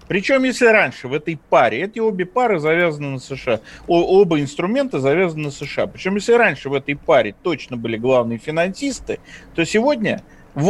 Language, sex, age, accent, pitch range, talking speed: Russian, male, 40-59, native, 130-195 Hz, 170 wpm